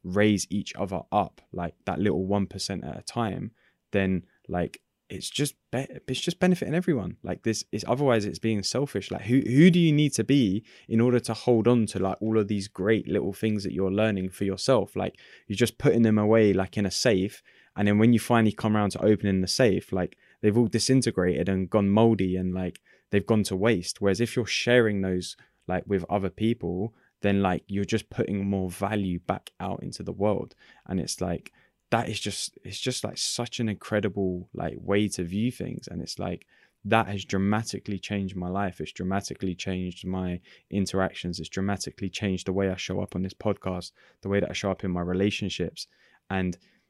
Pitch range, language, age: 95-115 Hz, English, 20-39